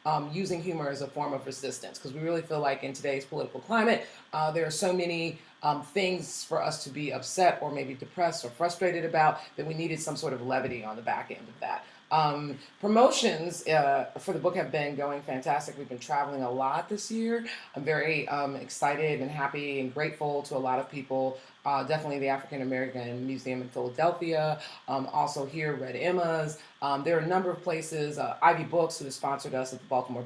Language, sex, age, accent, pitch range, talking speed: English, female, 30-49, American, 135-165 Hz, 215 wpm